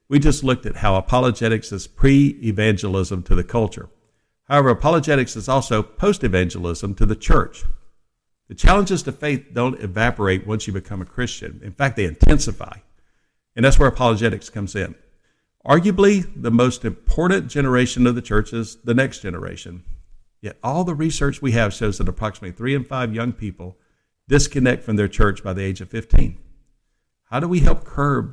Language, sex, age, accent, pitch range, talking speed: English, male, 60-79, American, 100-130 Hz, 170 wpm